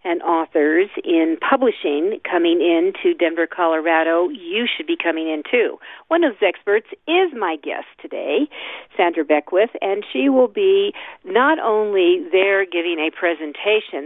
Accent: American